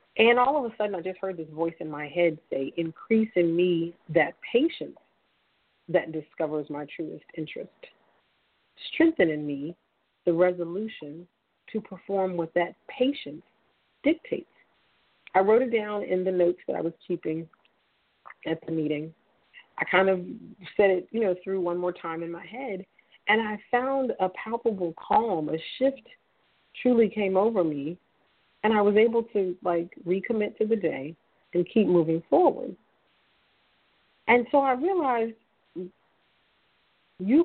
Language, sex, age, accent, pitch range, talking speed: English, female, 40-59, American, 165-220 Hz, 150 wpm